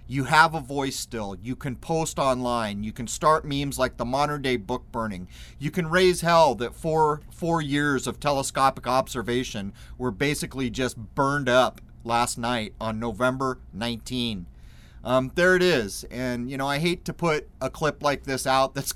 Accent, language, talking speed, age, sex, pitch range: American, English, 175 wpm, 30-49, male, 120-150 Hz